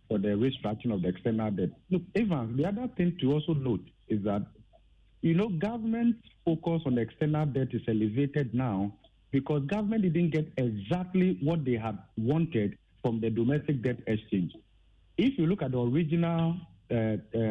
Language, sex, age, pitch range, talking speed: English, male, 50-69, 115-165 Hz, 170 wpm